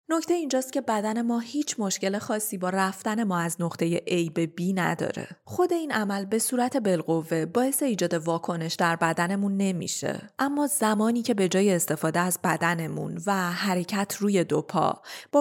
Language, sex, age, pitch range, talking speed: Persian, female, 30-49, 175-235 Hz, 165 wpm